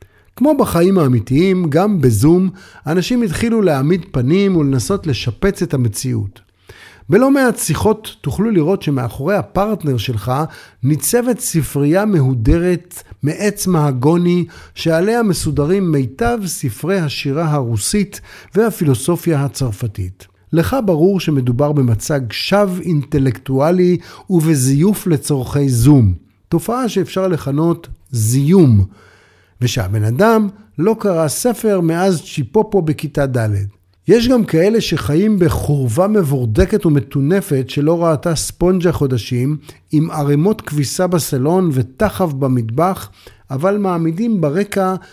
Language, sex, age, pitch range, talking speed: Hebrew, male, 50-69, 130-190 Hz, 100 wpm